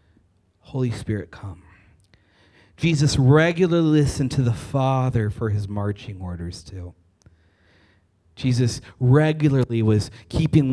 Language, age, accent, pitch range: English, 30-49, American, 95-125 Hz